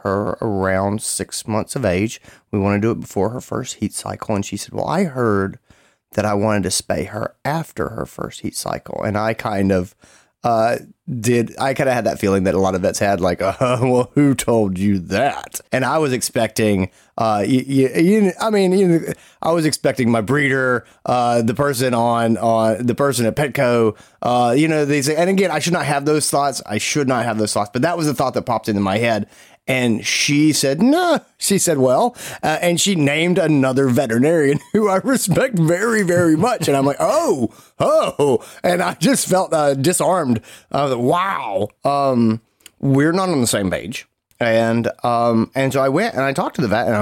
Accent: American